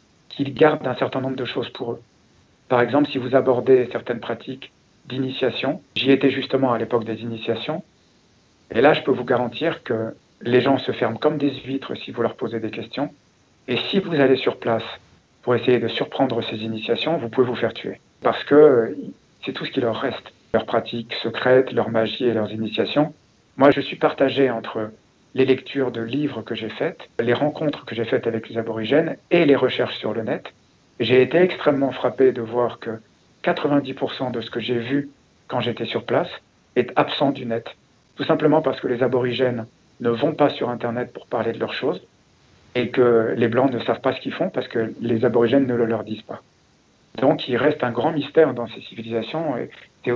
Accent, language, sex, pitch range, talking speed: French, French, male, 115-135 Hz, 205 wpm